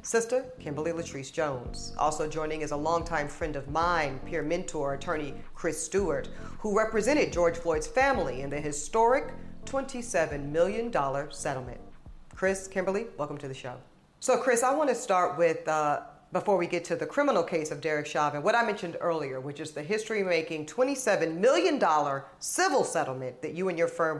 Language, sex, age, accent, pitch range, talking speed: English, female, 40-59, American, 155-200 Hz, 170 wpm